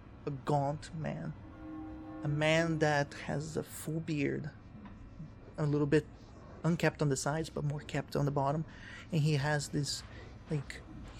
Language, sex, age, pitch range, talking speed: English, male, 30-49, 105-160 Hz, 155 wpm